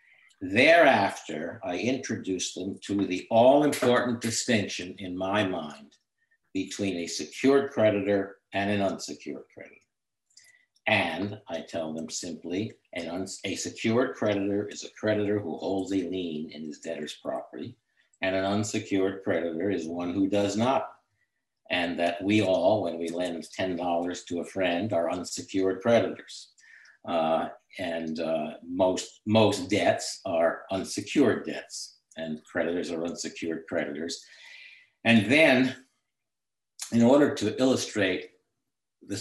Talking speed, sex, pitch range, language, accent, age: 130 wpm, male, 90-115 Hz, English, American, 60-79